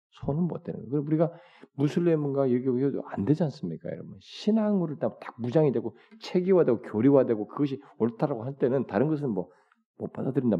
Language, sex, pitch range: Korean, male, 95-160 Hz